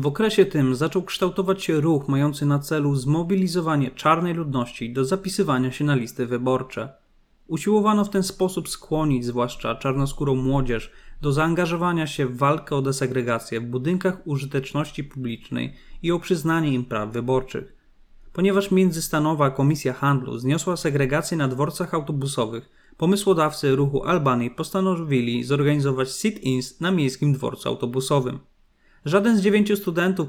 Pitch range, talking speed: 130-165 Hz, 135 wpm